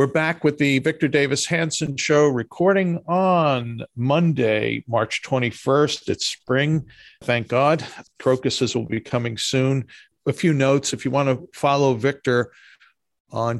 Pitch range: 115-145 Hz